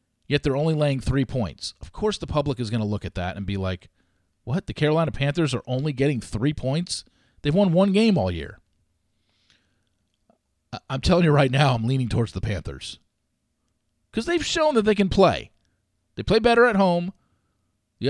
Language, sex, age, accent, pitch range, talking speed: English, male, 40-59, American, 105-155 Hz, 190 wpm